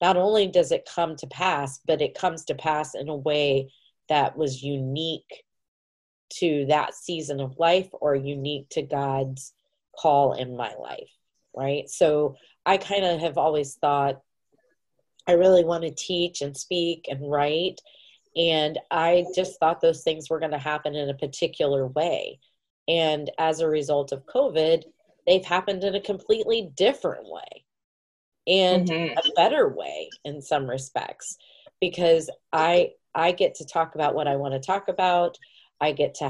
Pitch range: 140-180 Hz